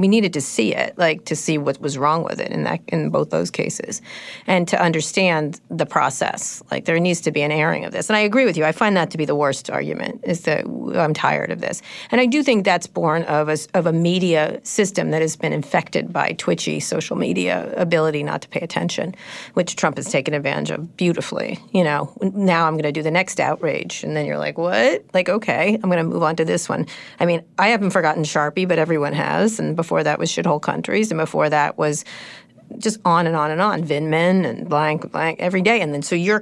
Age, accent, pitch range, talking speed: 40-59, American, 155-210 Hz, 240 wpm